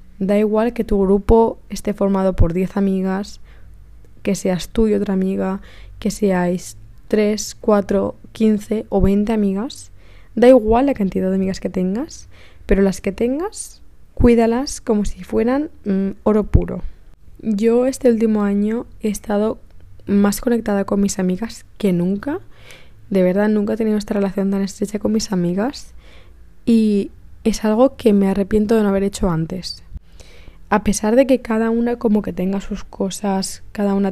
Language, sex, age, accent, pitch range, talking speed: Spanish, female, 20-39, Spanish, 190-225 Hz, 160 wpm